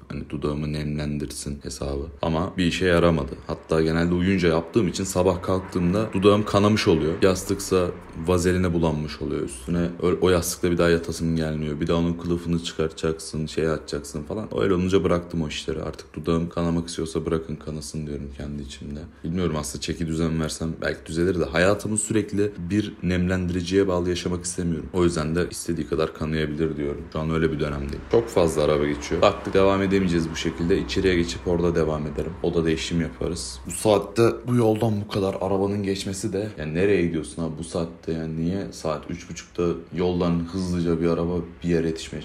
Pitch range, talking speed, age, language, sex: 80-90 Hz, 175 wpm, 30-49, Turkish, male